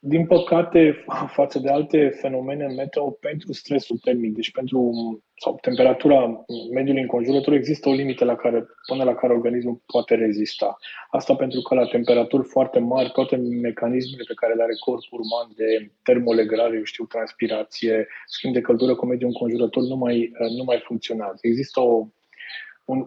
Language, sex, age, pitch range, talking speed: Romanian, male, 20-39, 115-130 Hz, 155 wpm